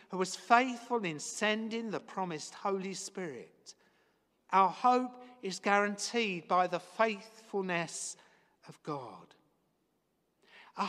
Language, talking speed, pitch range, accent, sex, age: English, 105 wpm, 180-225 Hz, British, male, 50-69